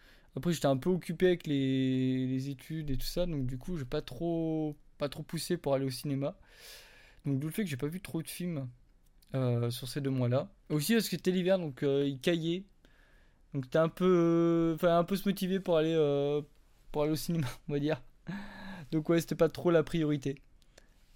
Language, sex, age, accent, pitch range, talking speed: French, male, 20-39, French, 140-180 Hz, 220 wpm